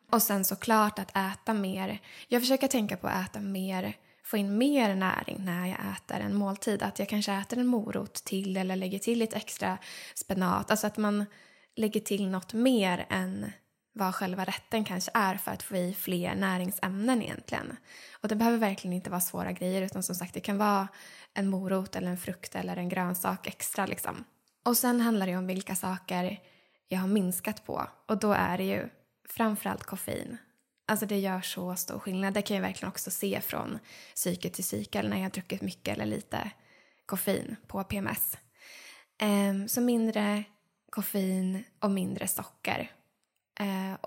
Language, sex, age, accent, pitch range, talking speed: Swedish, female, 10-29, native, 185-215 Hz, 180 wpm